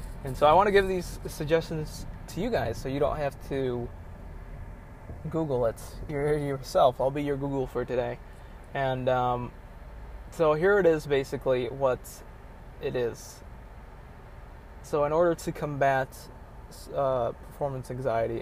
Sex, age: male, 20-39